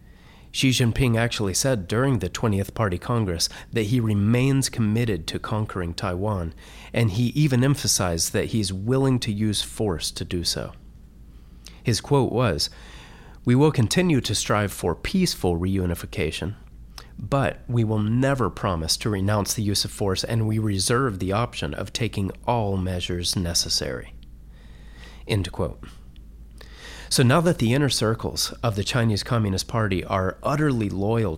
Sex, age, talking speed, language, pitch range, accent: male, 40-59, 145 wpm, English, 90-120 Hz, American